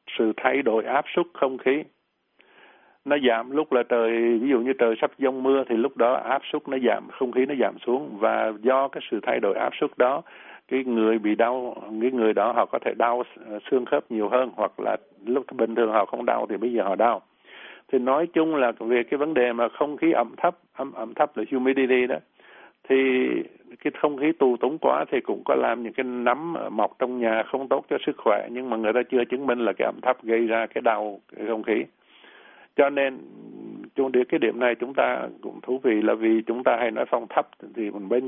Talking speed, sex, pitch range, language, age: 230 wpm, male, 115-135 Hz, Vietnamese, 60-79